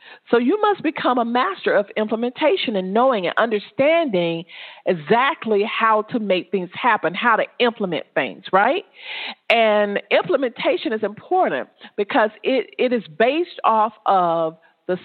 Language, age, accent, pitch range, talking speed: English, 40-59, American, 185-240 Hz, 140 wpm